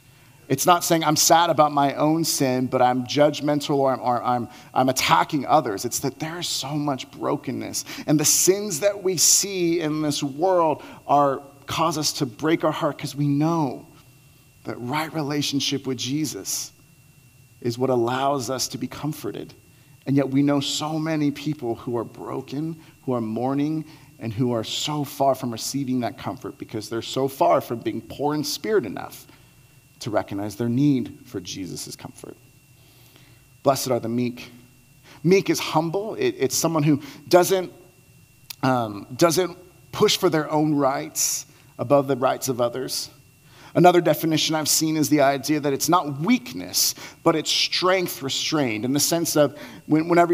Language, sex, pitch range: English, male, 130-155 Hz